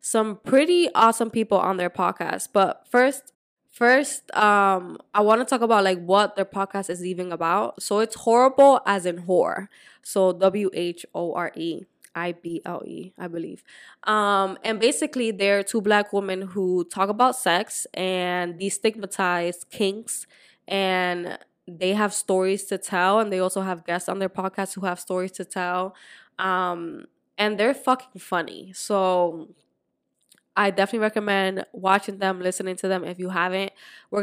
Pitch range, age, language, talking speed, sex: 180-210 Hz, 10-29, English, 155 wpm, female